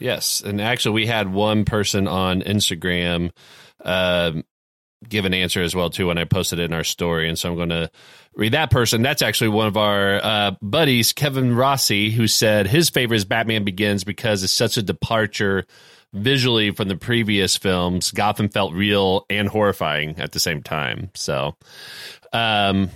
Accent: American